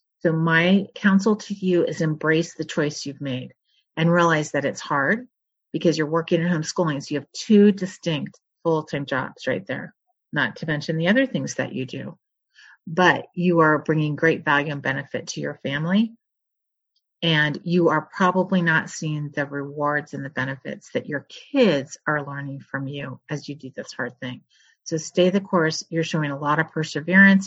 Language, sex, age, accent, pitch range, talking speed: English, female, 40-59, American, 145-180 Hz, 185 wpm